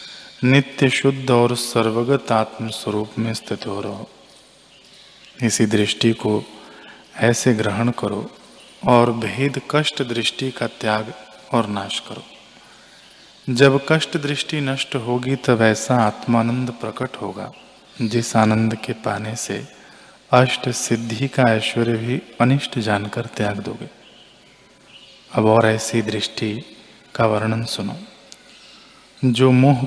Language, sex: Hindi, male